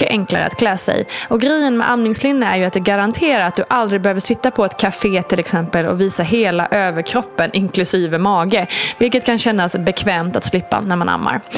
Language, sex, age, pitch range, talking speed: Swedish, female, 20-39, 185-260 Hz, 195 wpm